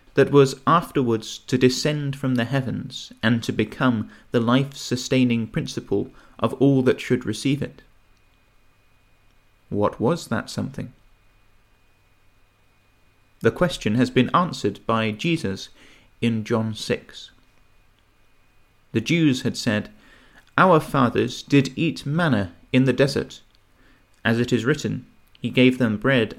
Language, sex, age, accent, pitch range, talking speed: English, male, 30-49, British, 105-130 Hz, 125 wpm